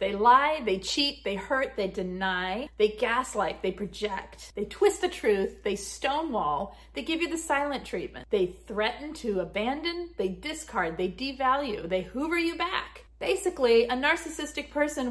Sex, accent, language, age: female, American, English, 40-59